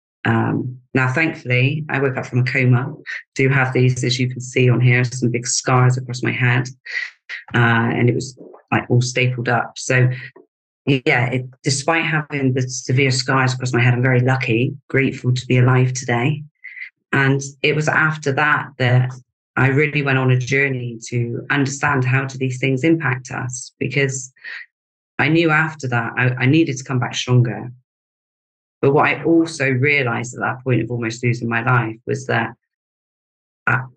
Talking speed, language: 175 wpm, English